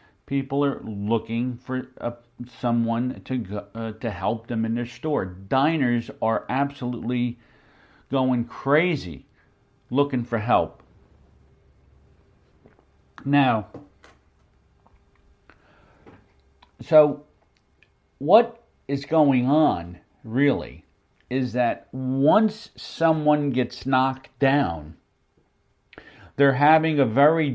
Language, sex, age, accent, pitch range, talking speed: English, male, 50-69, American, 115-145 Hz, 85 wpm